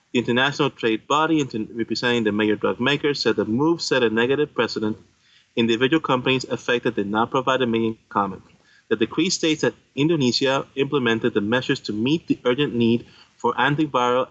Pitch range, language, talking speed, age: 110-135 Hz, English, 170 wpm, 30-49